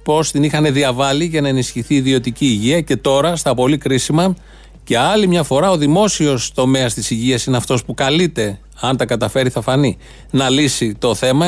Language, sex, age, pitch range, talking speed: Greek, male, 30-49, 125-155 Hz, 195 wpm